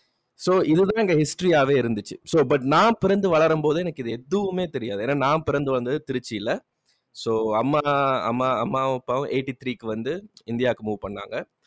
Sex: male